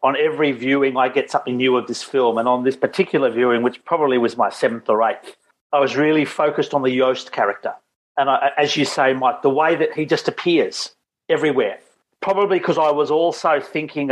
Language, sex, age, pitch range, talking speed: English, male, 40-59, 125-160 Hz, 205 wpm